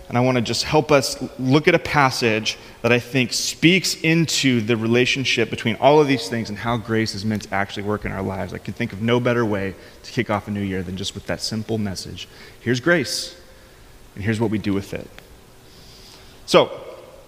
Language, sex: English, male